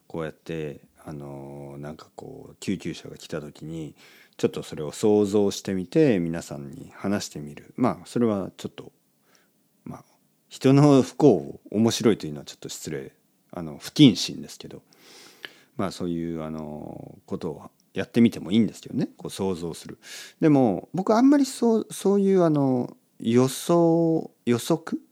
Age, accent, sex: 40-59, native, male